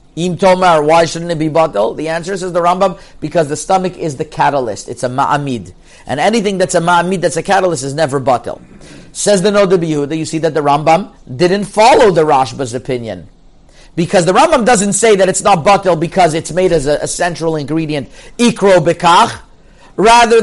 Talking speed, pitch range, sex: 190 wpm, 145-200 Hz, male